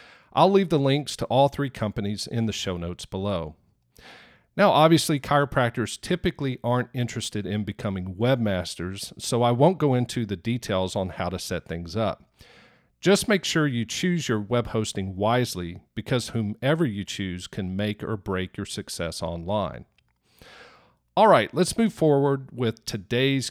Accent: American